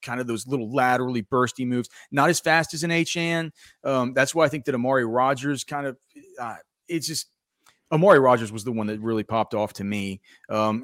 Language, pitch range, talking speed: English, 110-140 Hz, 210 wpm